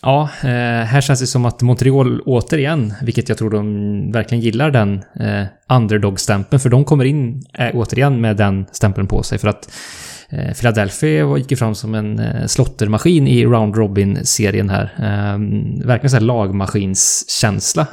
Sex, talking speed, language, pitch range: male, 140 wpm, English, 105-130 Hz